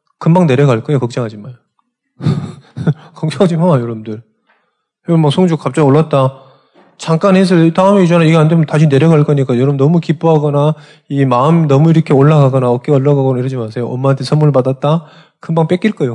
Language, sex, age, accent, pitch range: Korean, male, 20-39, native, 120-170 Hz